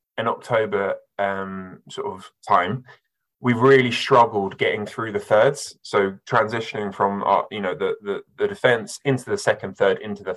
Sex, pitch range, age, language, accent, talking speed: male, 105-135 Hz, 20-39, English, British, 170 wpm